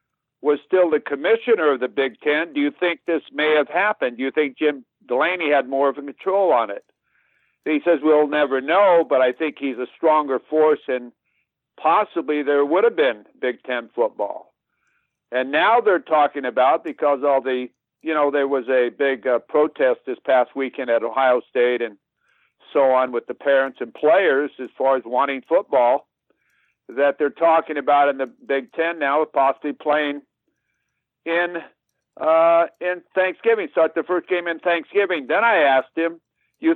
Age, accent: 60-79, American